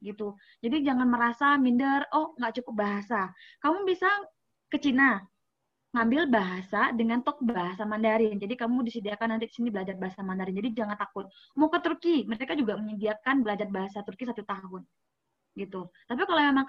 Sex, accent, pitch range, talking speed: female, native, 215-255 Hz, 165 wpm